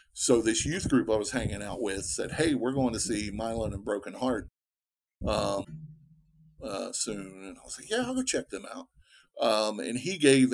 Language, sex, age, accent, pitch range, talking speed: English, male, 50-69, American, 110-155 Hz, 205 wpm